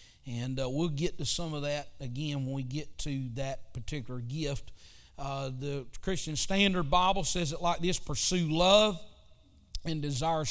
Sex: male